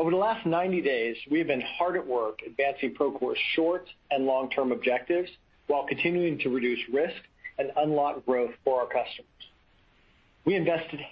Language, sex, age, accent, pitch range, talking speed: English, male, 40-59, American, 130-175 Hz, 160 wpm